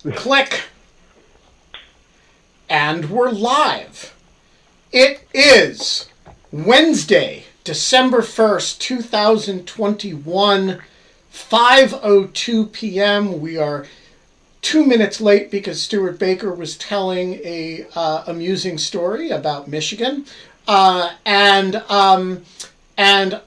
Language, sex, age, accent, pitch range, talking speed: English, male, 50-69, American, 155-205 Hz, 85 wpm